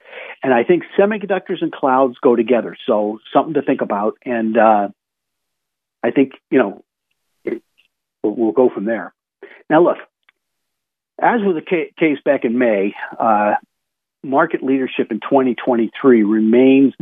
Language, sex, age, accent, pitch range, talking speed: English, male, 50-69, American, 115-165 Hz, 140 wpm